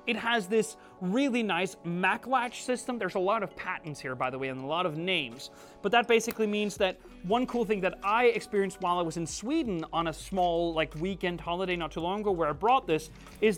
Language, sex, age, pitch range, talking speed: English, male, 30-49, 170-225 Hz, 235 wpm